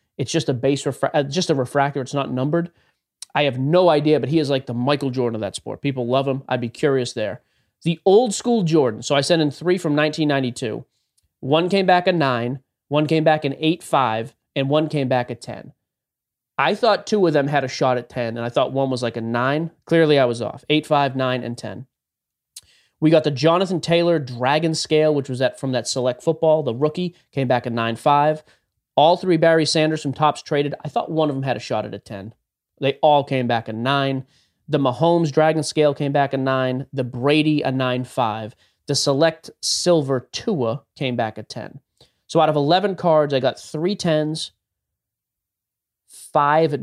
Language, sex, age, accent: English, male, 30-49, American